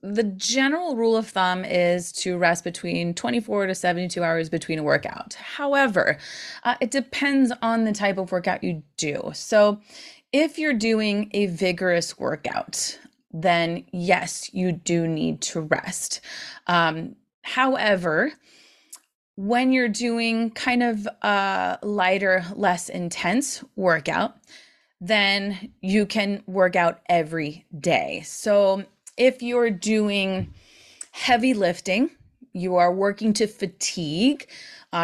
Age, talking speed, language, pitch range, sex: 20-39, 125 wpm, English, 175-225 Hz, female